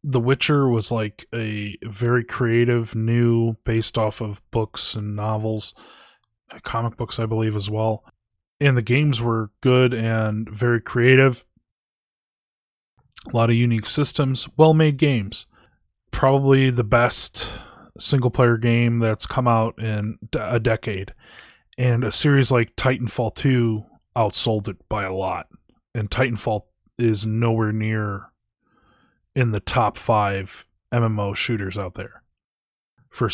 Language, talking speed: English, 130 wpm